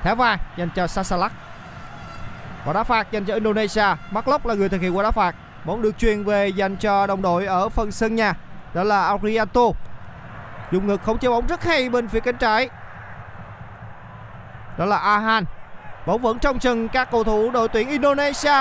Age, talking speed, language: 20-39, 185 wpm, Vietnamese